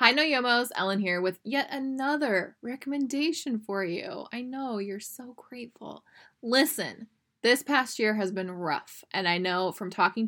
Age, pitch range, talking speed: 10-29, 185-240 Hz, 165 wpm